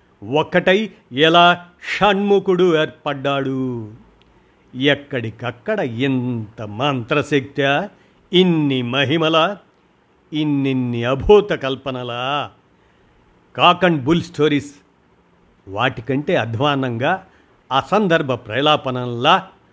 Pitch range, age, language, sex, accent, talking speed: 125-160 Hz, 50-69, Telugu, male, native, 60 wpm